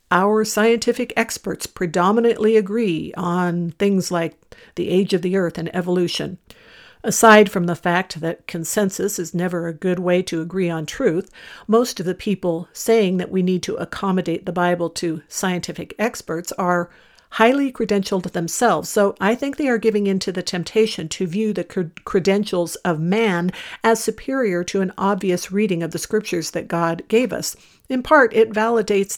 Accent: American